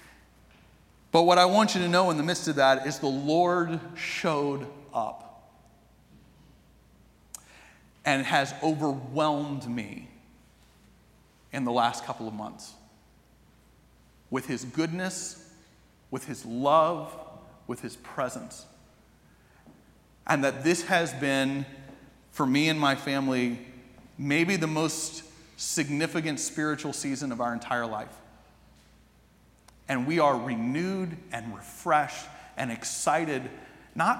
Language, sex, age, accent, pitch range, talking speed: English, male, 40-59, American, 130-165 Hz, 115 wpm